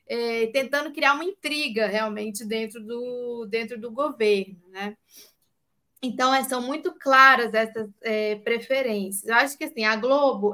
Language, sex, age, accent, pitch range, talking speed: Portuguese, female, 20-39, Brazilian, 220-285 Hz, 140 wpm